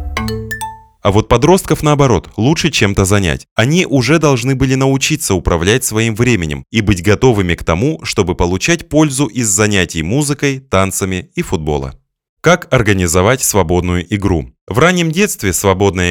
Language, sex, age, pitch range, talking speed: Russian, male, 20-39, 90-140 Hz, 140 wpm